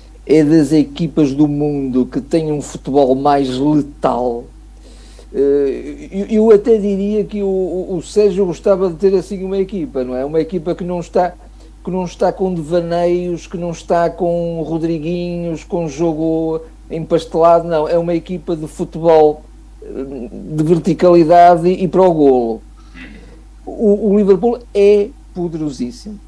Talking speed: 135 wpm